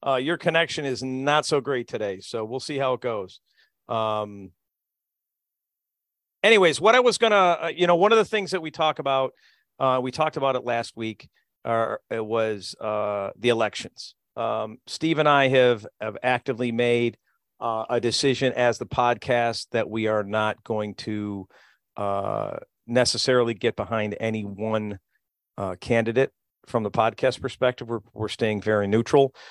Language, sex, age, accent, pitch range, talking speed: English, male, 50-69, American, 105-125 Hz, 165 wpm